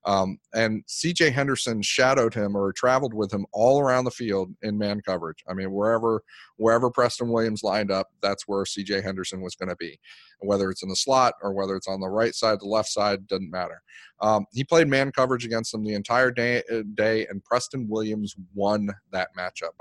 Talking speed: 210 wpm